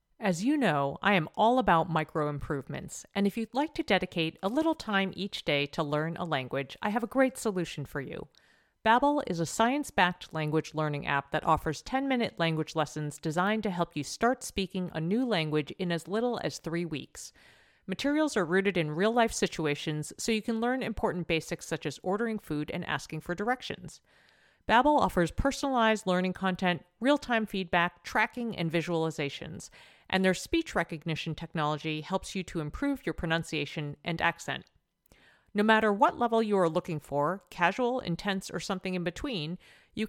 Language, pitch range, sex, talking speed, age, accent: English, 160-220 Hz, female, 175 wpm, 50-69, American